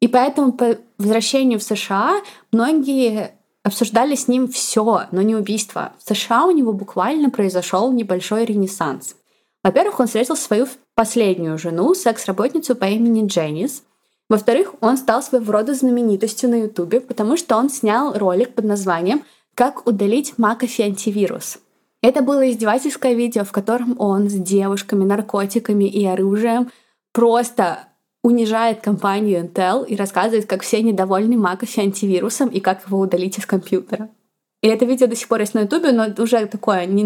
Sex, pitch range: female, 200-240 Hz